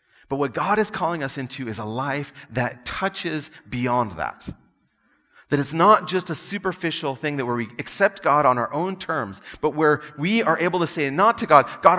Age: 30-49